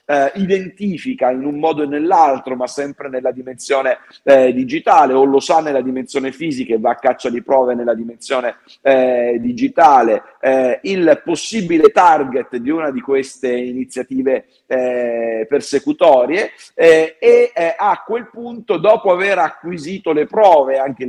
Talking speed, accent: 150 wpm, native